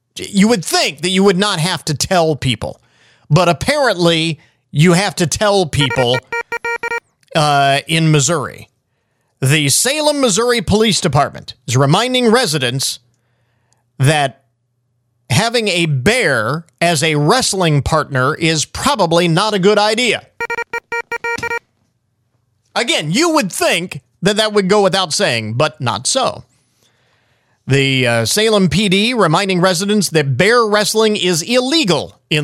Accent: American